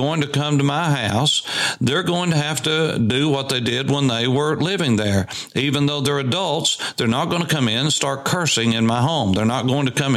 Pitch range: 120-160 Hz